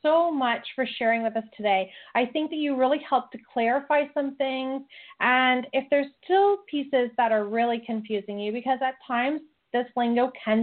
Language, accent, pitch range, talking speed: English, American, 215-275 Hz, 185 wpm